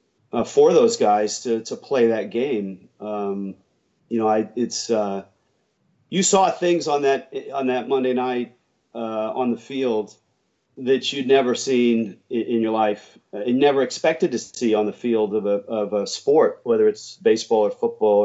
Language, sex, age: English, male, 40-59